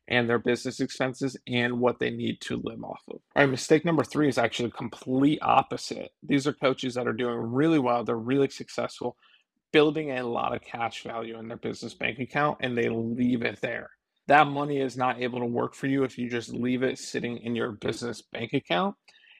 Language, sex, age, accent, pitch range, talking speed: English, male, 30-49, American, 120-145 Hz, 210 wpm